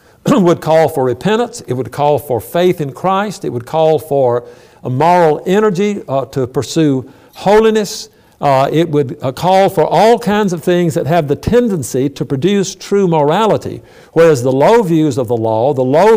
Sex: male